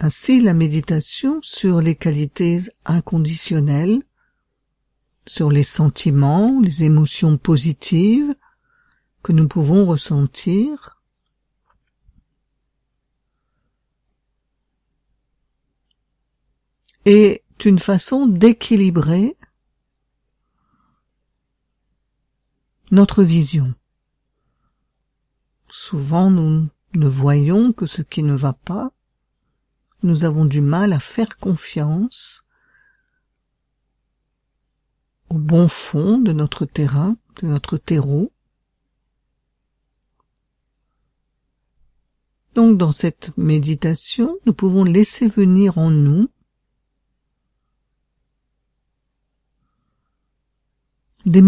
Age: 50-69